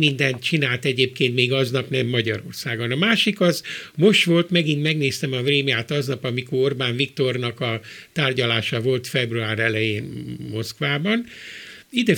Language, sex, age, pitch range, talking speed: Hungarian, male, 60-79, 130-165 Hz, 135 wpm